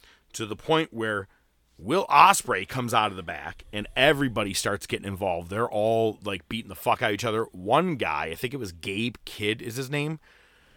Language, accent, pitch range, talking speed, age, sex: English, American, 100-125 Hz, 205 wpm, 40-59, male